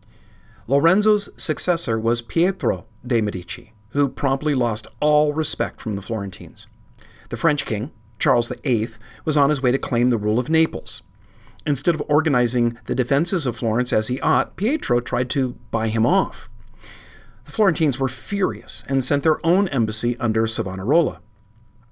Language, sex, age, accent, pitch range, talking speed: English, male, 50-69, American, 110-140 Hz, 155 wpm